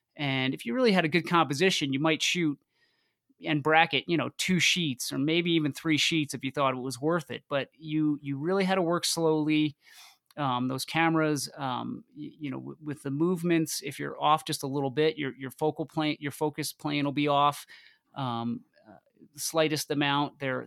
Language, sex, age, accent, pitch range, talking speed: English, male, 30-49, American, 135-155 Hz, 205 wpm